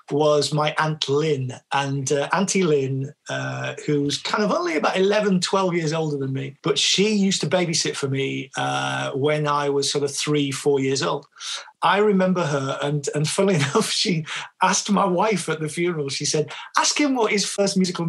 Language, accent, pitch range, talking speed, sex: English, British, 140-170 Hz, 195 wpm, male